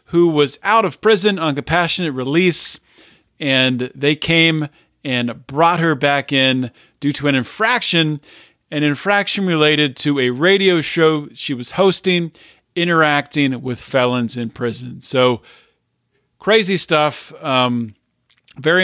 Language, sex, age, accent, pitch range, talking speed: English, male, 40-59, American, 130-170 Hz, 125 wpm